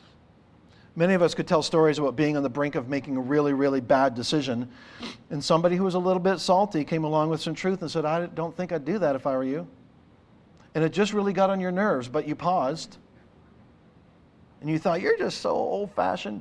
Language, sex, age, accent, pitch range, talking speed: English, male, 50-69, American, 145-175 Hz, 225 wpm